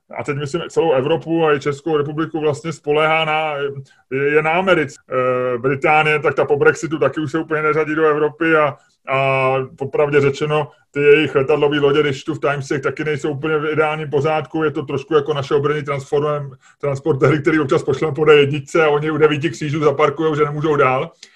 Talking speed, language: 190 wpm, Czech